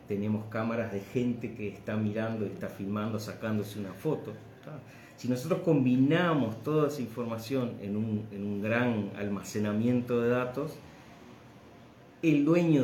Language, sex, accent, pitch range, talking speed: Spanish, male, Argentinian, 105-130 Hz, 125 wpm